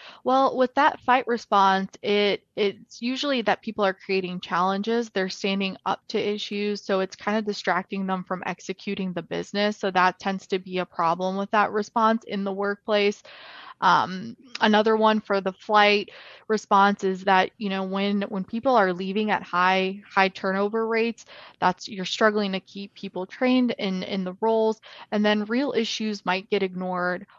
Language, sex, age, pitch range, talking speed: English, female, 20-39, 185-215 Hz, 175 wpm